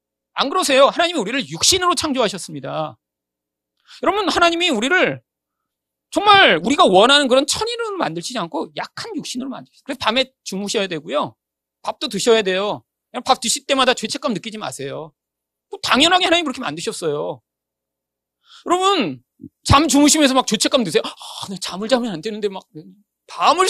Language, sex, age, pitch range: Korean, male, 40-59, 180-295 Hz